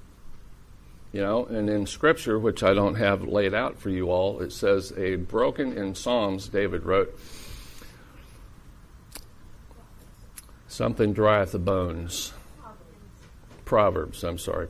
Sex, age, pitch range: male, 50-69, 95-120 Hz